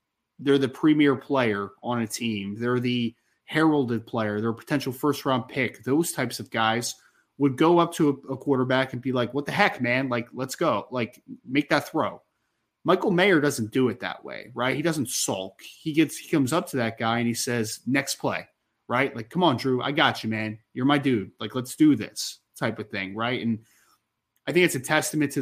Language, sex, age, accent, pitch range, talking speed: English, male, 20-39, American, 115-145 Hz, 215 wpm